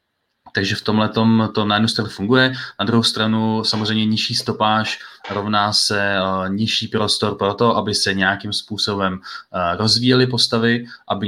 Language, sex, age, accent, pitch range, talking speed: Czech, male, 20-39, native, 100-110 Hz, 160 wpm